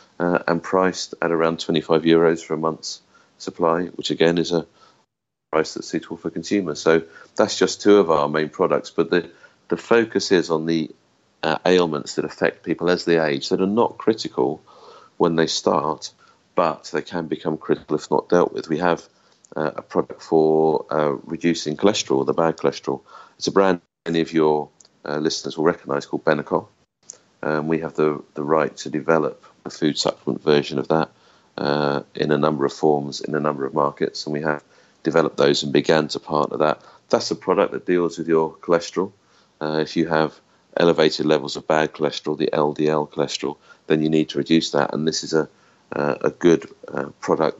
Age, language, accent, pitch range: 40-59, English, British, 75-80 Hz